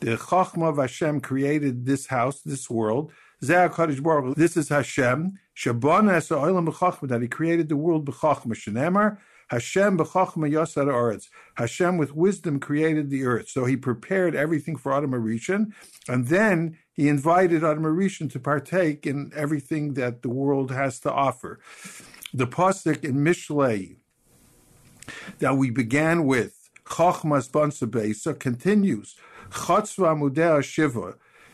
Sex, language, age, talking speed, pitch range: male, English, 50-69, 125 wpm, 135-175 Hz